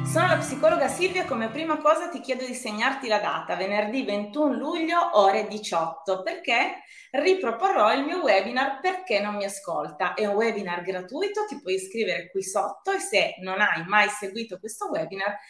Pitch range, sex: 195-305 Hz, female